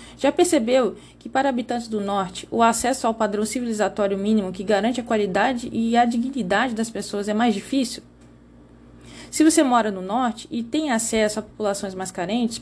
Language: Portuguese